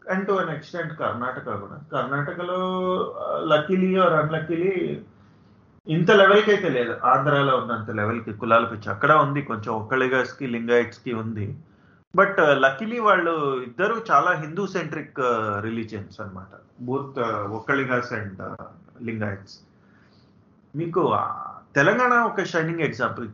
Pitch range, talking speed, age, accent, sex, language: 115-180 Hz, 120 wpm, 30-49, native, male, Telugu